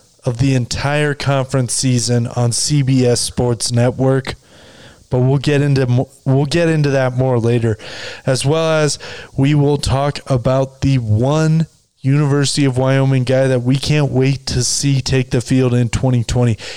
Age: 20-39